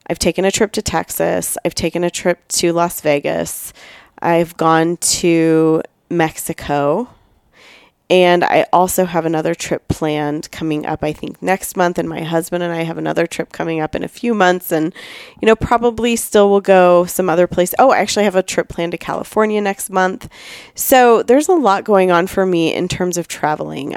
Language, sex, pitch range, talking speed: English, female, 160-185 Hz, 195 wpm